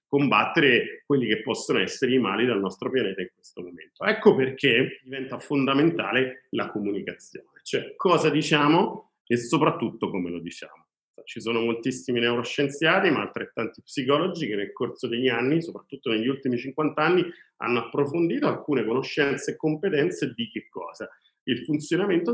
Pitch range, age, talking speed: 115-165 Hz, 40-59, 150 wpm